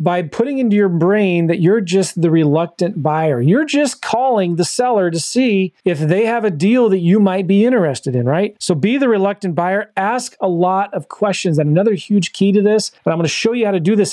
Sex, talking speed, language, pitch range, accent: male, 235 wpm, English, 165-205 Hz, American